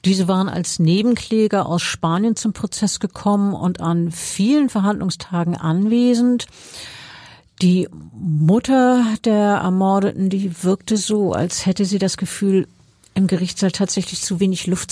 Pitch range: 185-220 Hz